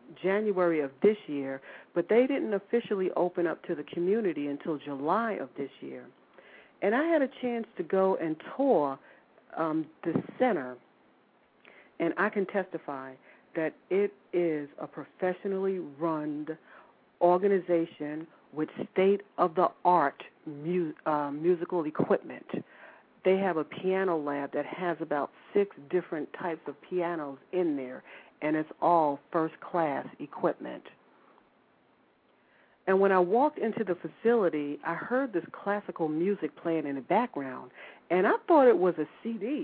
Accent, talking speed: American, 135 wpm